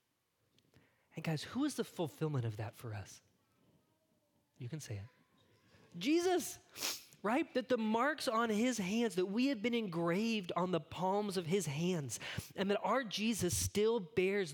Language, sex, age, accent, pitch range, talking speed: English, male, 20-39, American, 155-215 Hz, 160 wpm